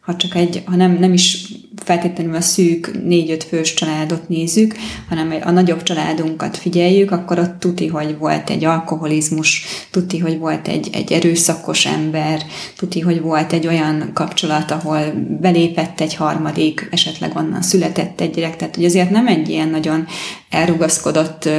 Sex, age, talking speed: female, 20-39, 155 wpm